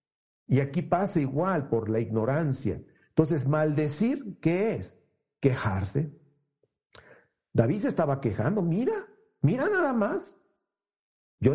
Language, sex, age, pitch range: Spanish, male, 50-69, 120-155 Hz